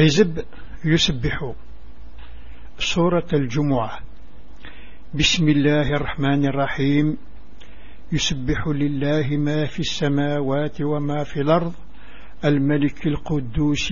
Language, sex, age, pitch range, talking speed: English, male, 60-79, 130-155 Hz, 80 wpm